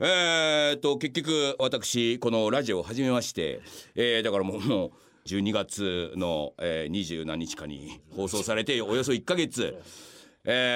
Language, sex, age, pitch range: Japanese, male, 40-59, 110-170 Hz